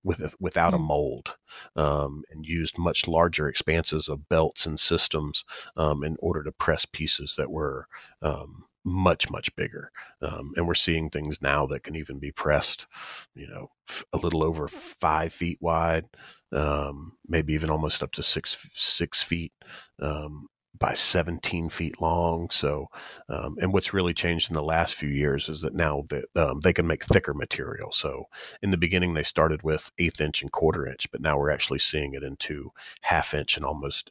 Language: English